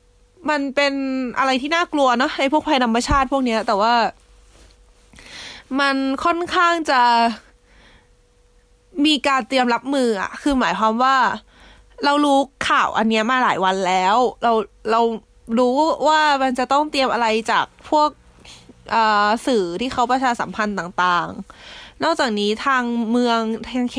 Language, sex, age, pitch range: English, female, 20-39, 210-265 Hz